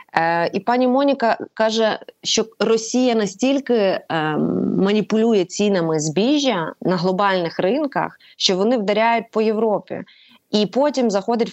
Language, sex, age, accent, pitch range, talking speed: Ukrainian, female, 20-39, native, 175-225 Hz, 120 wpm